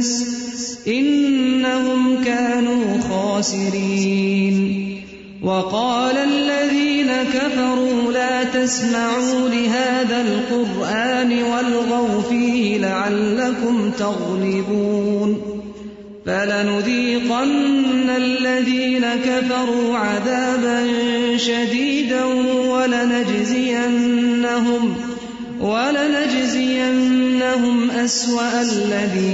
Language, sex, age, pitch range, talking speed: English, male, 30-49, 205-255 Hz, 45 wpm